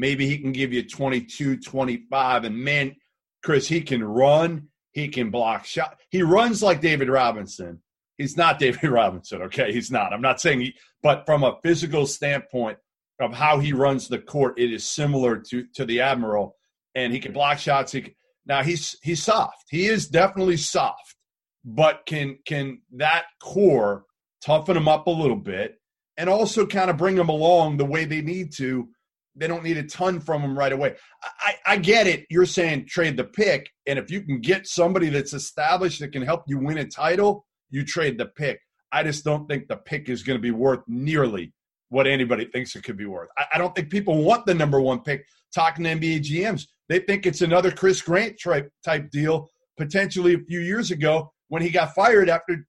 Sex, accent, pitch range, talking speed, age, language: male, American, 135-175 Hz, 200 wpm, 40-59, English